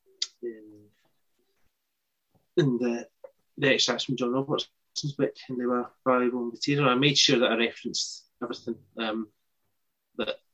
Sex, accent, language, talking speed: male, British, English, 130 wpm